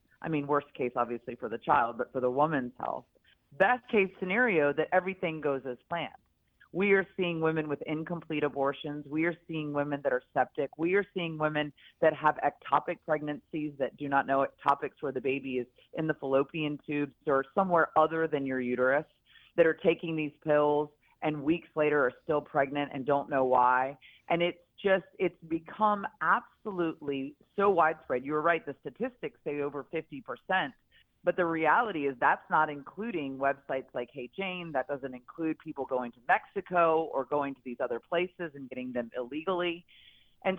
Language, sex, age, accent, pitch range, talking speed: English, female, 30-49, American, 135-170 Hz, 180 wpm